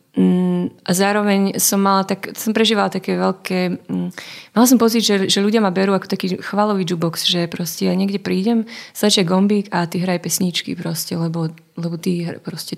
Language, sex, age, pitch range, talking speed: Slovak, female, 20-39, 170-195 Hz, 185 wpm